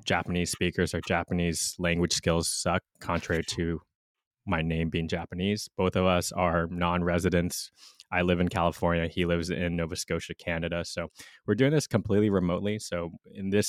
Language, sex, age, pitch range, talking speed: English, male, 20-39, 85-105 Hz, 160 wpm